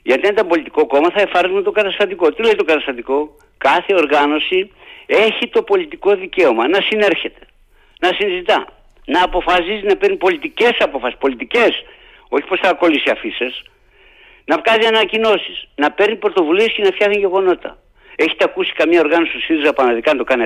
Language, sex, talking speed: Greek, male, 160 wpm